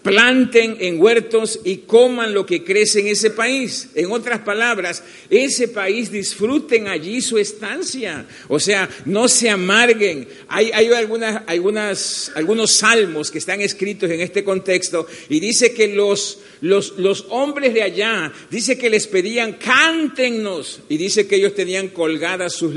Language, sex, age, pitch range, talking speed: Spanish, male, 50-69, 175-230 Hz, 155 wpm